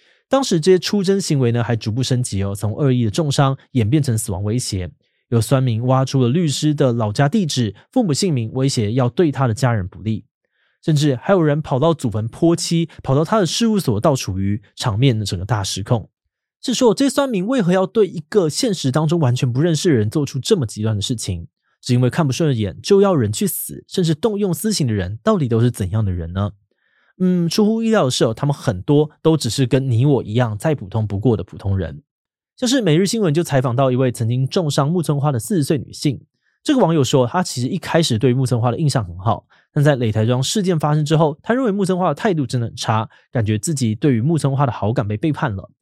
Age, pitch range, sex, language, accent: 20-39, 115-165 Hz, male, Chinese, native